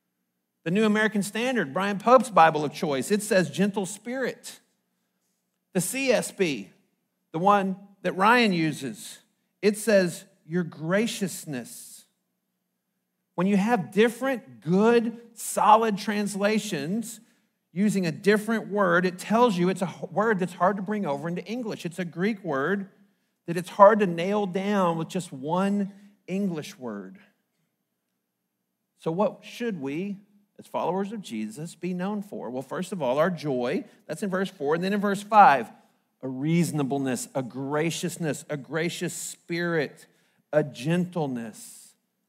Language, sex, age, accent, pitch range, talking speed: English, male, 40-59, American, 160-210 Hz, 140 wpm